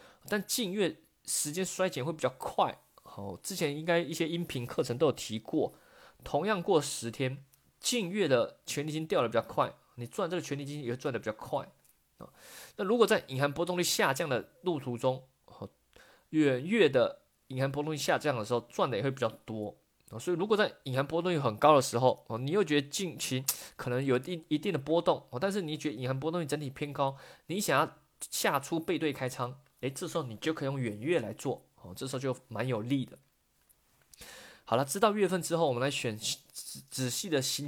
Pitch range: 130-175 Hz